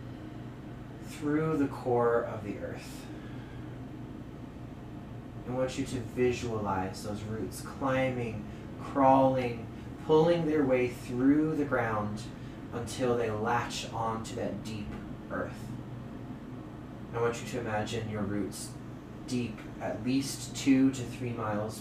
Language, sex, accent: English, male, American